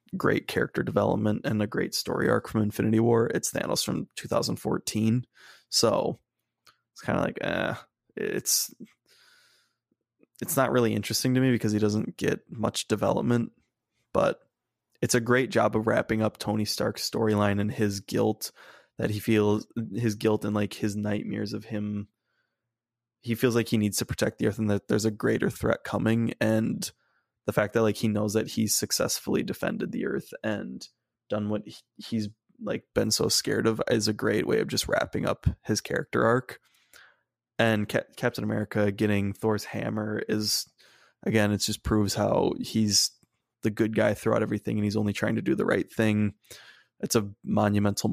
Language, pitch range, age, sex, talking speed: English, 105-115 Hz, 20-39, male, 170 wpm